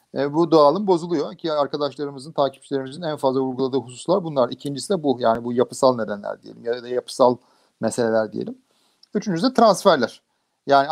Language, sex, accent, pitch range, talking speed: Turkish, male, native, 140-180 Hz, 160 wpm